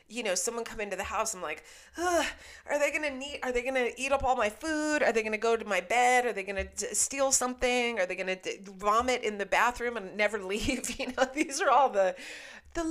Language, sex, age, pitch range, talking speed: English, female, 30-49, 175-255 Hz, 245 wpm